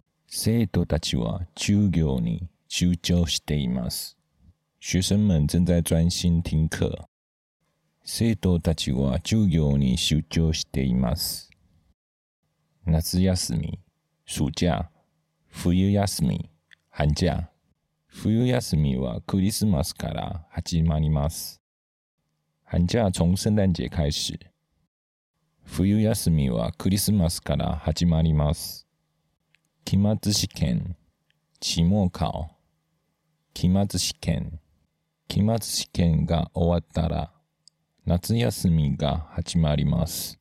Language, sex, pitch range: Japanese, male, 80-95 Hz